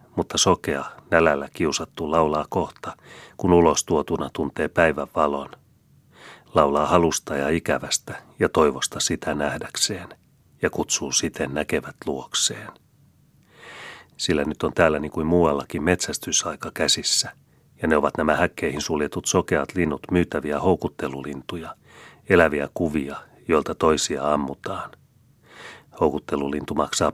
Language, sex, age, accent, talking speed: Finnish, male, 40-59, native, 110 wpm